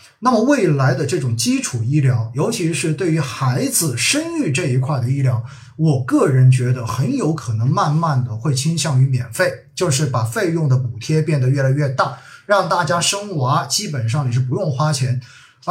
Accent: native